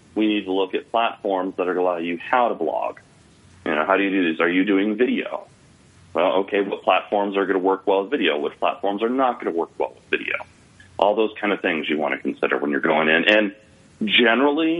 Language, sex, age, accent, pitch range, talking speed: English, male, 30-49, American, 95-115 Hz, 230 wpm